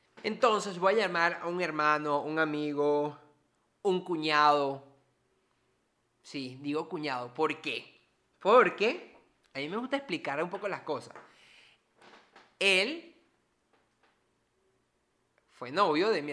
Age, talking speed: 30-49, 115 wpm